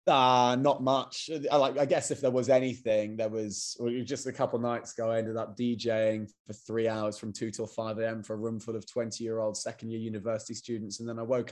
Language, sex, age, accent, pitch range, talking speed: English, male, 20-39, British, 110-130 Hz, 220 wpm